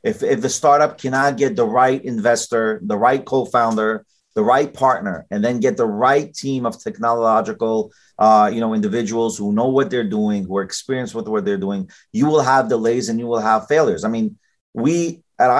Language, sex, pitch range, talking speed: English, male, 115-155 Hz, 200 wpm